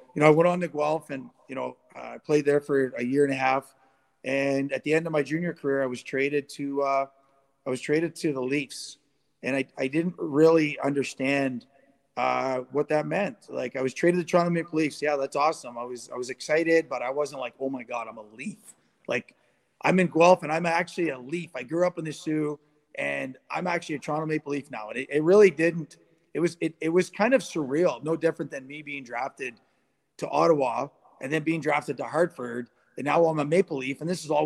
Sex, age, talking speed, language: male, 30-49, 235 wpm, English